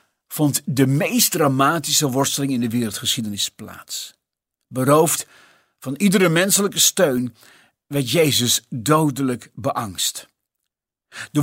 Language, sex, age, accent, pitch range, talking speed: Dutch, male, 50-69, Dutch, 125-170 Hz, 100 wpm